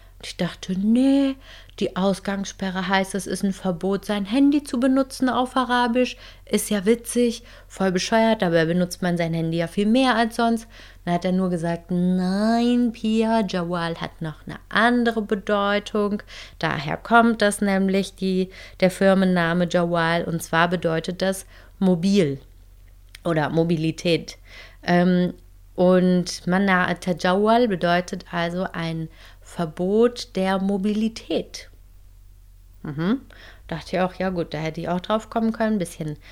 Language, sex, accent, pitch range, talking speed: German, female, German, 165-200 Hz, 130 wpm